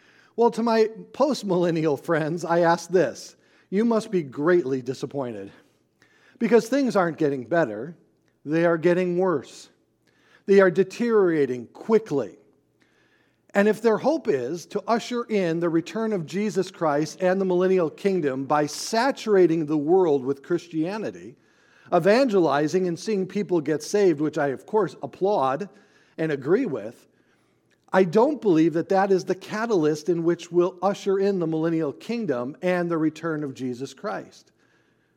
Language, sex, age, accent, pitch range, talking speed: English, male, 50-69, American, 160-210 Hz, 145 wpm